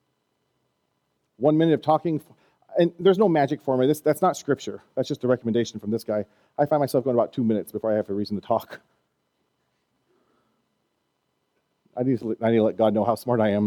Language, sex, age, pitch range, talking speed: English, male, 40-59, 110-150 Hz, 195 wpm